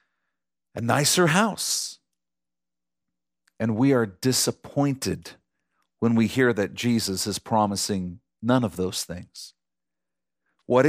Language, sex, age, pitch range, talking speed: English, male, 40-59, 100-165 Hz, 105 wpm